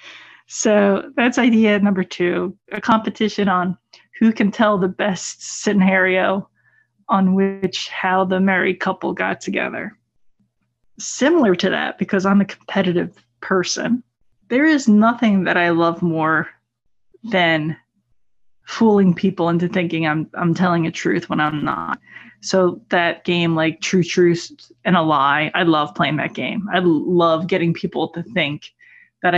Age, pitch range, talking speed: 20-39, 165-205 Hz, 145 wpm